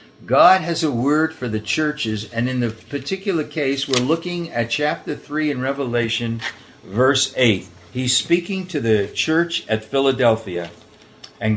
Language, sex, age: English, male, 60-79